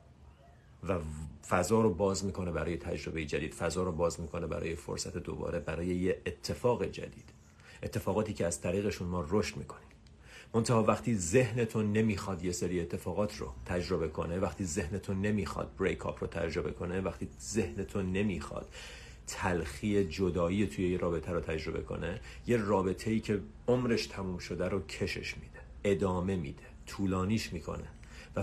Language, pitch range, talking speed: Persian, 85-105 Hz, 145 wpm